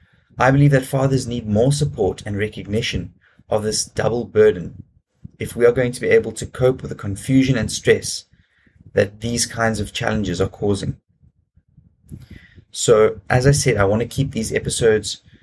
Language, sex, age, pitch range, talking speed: English, male, 20-39, 105-130 Hz, 170 wpm